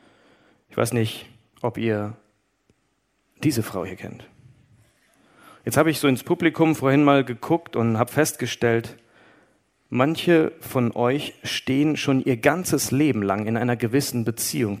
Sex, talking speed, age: male, 140 wpm, 40-59